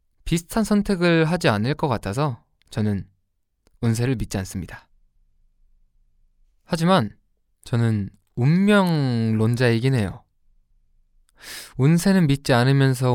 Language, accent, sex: Korean, native, male